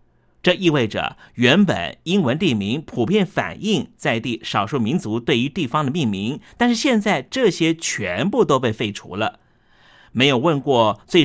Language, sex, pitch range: Chinese, male, 120-195 Hz